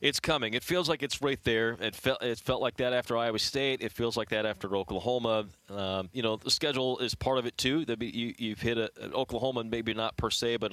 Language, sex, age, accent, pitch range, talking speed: English, male, 30-49, American, 100-120 Hz, 240 wpm